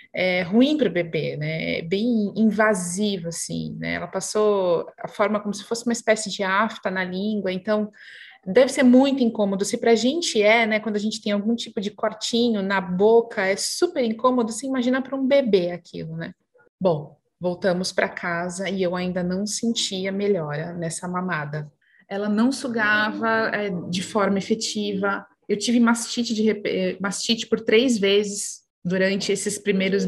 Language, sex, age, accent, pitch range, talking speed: Portuguese, female, 20-39, Brazilian, 195-245 Hz, 170 wpm